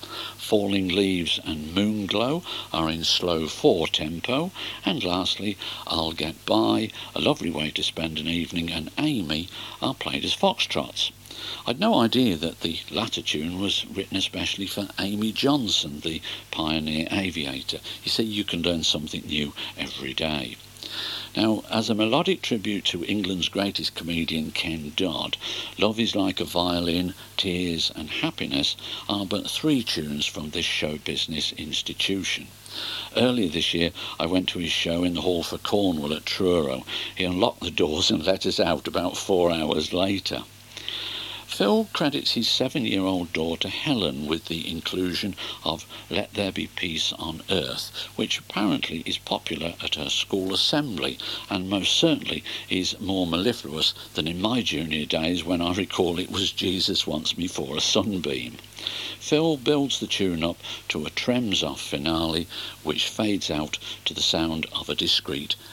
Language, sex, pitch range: English, male, 80-105 Hz